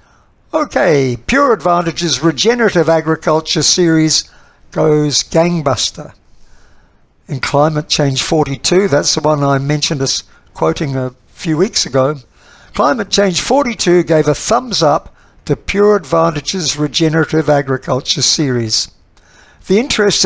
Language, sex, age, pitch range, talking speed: English, male, 60-79, 150-185 Hz, 115 wpm